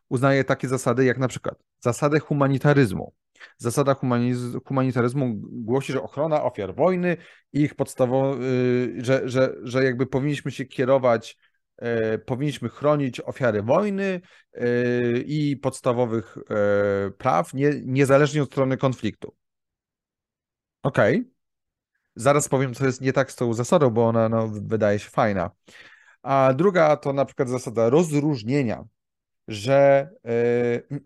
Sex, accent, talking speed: male, native, 115 wpm